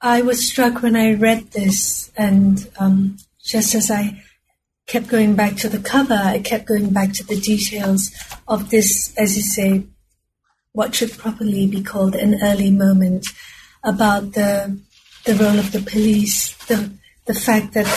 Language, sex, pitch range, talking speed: English, female, 200-235 Hz, 165 wpm